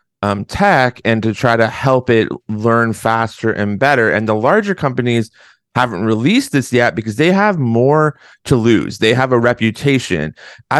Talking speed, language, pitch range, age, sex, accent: 170 wpm, English, 110-145 Hz, 30-49, male, American